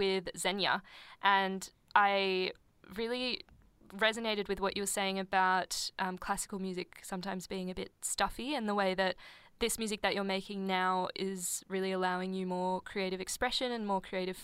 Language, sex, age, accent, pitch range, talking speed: English, female, 10-29, Australian, 190-220 Hz, 165 wpm